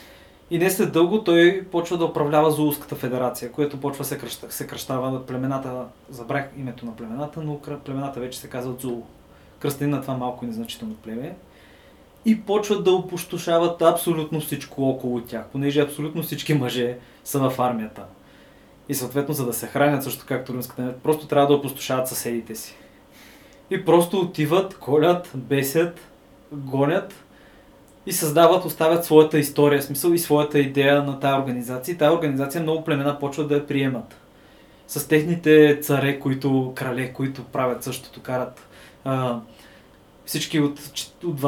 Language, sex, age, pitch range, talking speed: Bulgarian, male, 20-39, 125-150 Hz, 150 wpm